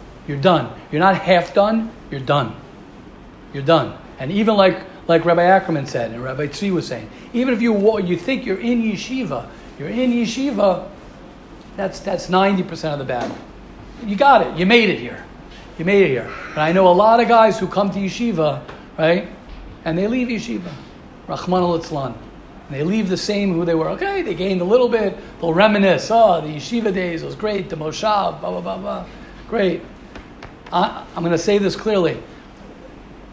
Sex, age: male, 50-69